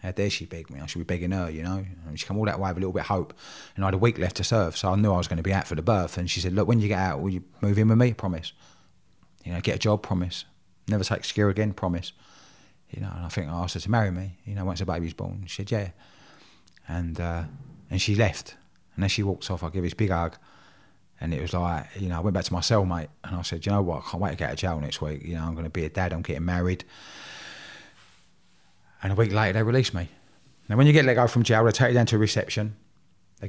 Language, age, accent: English, 20-39, British